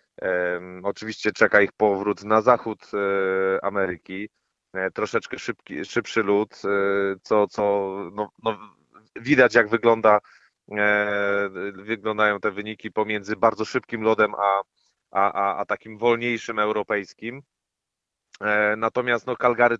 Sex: male